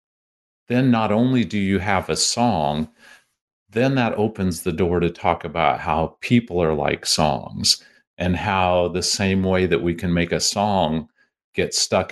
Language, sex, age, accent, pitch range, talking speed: English, male, 50-69, American, 80-105 Hz, 170 wpm